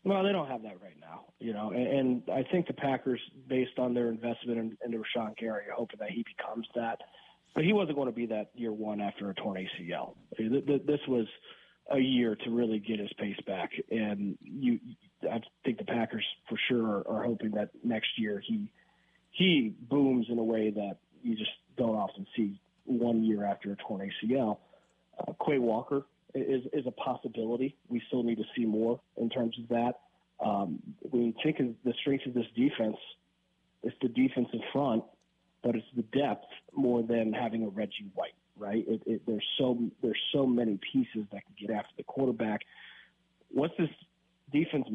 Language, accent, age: English, American, 30-49